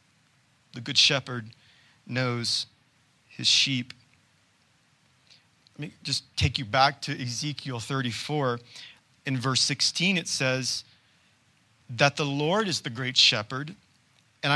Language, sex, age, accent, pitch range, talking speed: English, male, 40-59, American, 120-145 Hz, 115 wpm